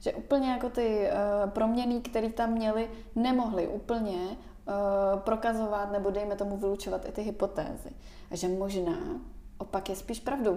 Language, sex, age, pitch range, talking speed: Czech, female, 20-39, 190-225 Hz, 155 wpm